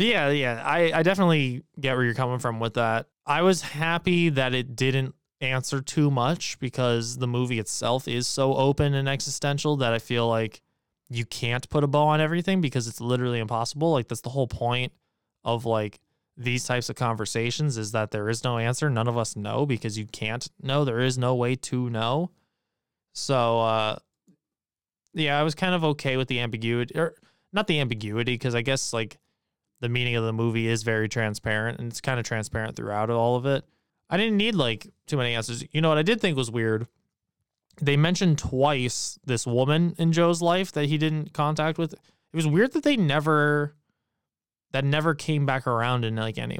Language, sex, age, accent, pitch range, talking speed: English, male, 20-39, American, 115-150 Hz, 200 wpm